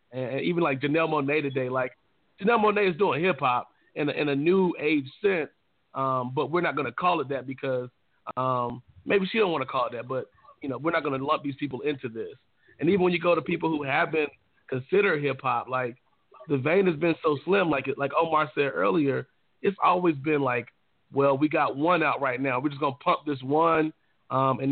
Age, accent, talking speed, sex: 30-49, American, 235 wpm, male